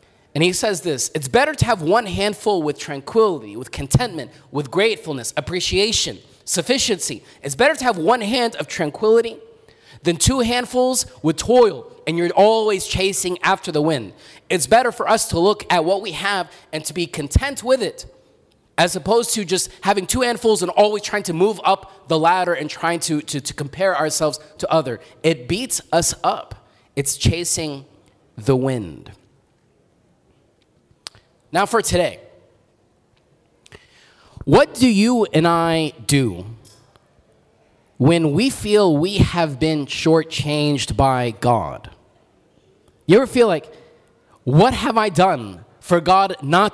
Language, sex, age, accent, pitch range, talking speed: English, male, 20-39, American, 150-210 Hz, 150 wpm